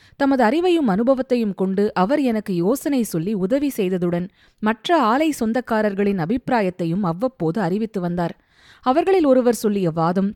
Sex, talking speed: female, 120 wpm